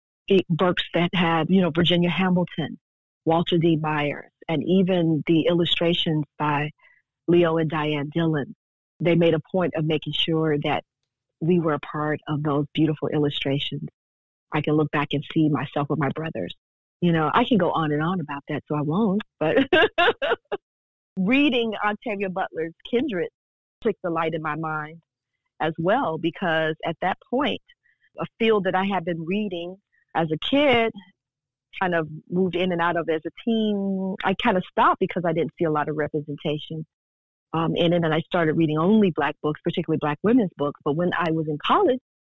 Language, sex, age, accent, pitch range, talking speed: English, female, 40-59, American, 155-185 Hz, 180 wpm